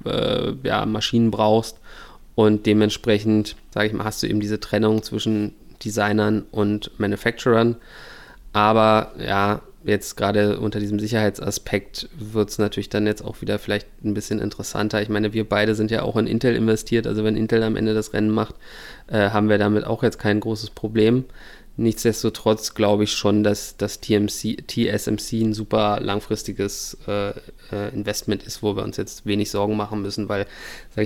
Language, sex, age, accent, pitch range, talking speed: German, male, 20-39, German, 105-110 Hz, 165 wpm